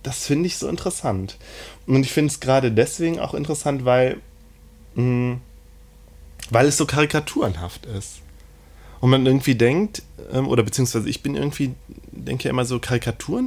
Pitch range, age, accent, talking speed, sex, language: 100-125 Hz, 20-39, German, 150 wpm, male, German